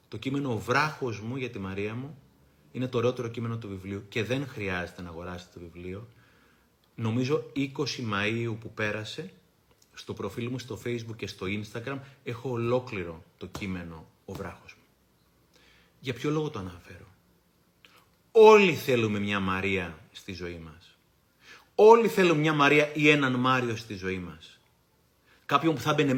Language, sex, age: Greek, male, 30-49